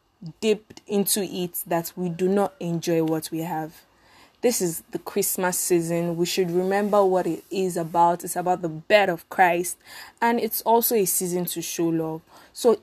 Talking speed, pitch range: 180 wpm, 180-230 Hz